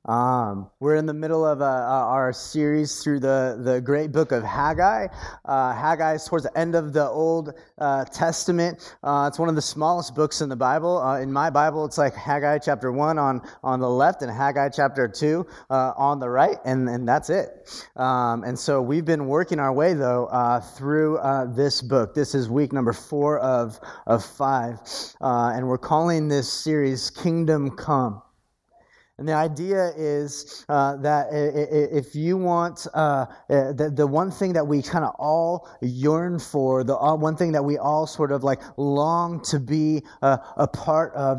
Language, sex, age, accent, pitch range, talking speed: English, male, 30-49, American, 130-160 Hz, 185 wpm